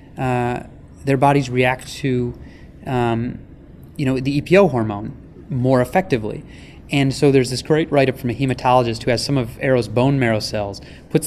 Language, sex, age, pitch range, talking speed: English, male, 30-49, 120-140 Hz, 165 wpm